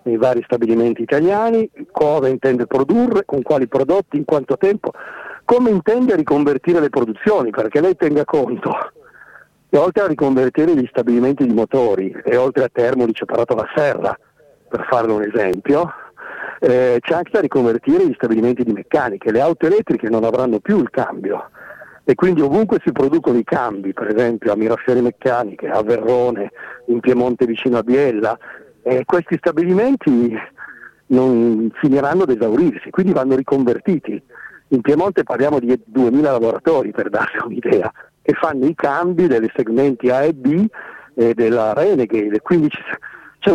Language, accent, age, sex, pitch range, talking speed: Italian, native, 50-69, male, 125-185 Hz, 150 wpm